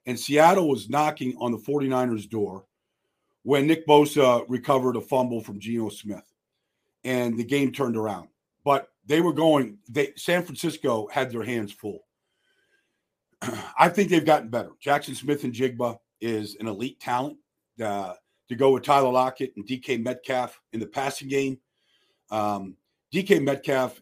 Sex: male